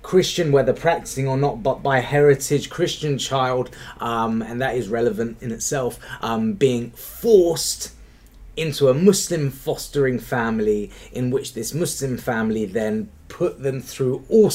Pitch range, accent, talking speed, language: 105-145 Hz, British, 145 wpm, English